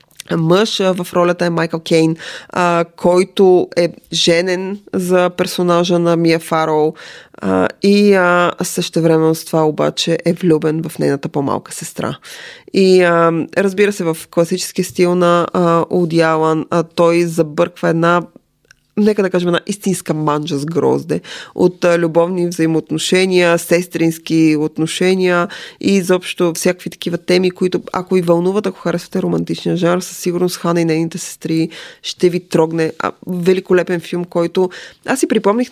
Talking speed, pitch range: 140 wpm, 160-180 Hz